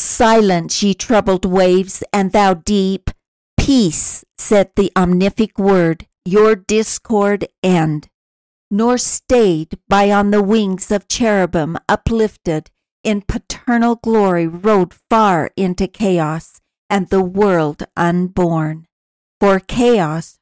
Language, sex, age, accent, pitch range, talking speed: English, female, 60-79, American, 175-215 Hz, 110 wpm